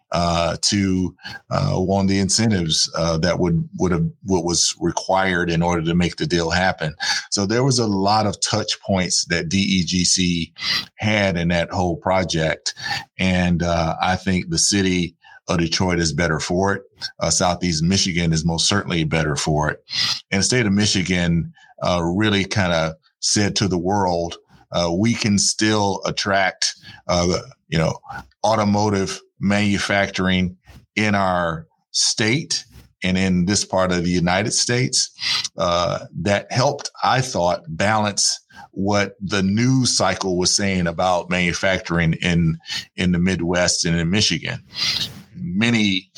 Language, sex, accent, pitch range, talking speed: English, male, American, 85-100 Hz, 145 wpm